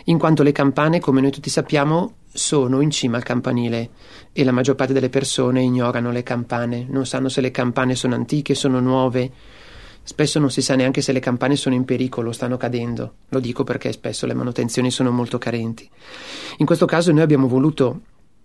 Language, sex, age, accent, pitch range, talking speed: Italian, male, 40-59, native, 125-145 Hz, 190 wpm